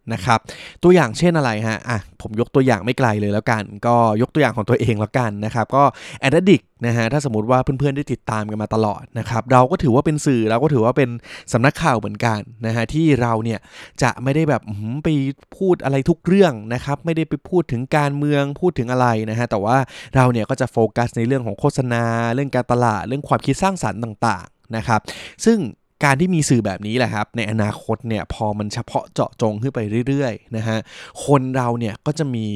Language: Thai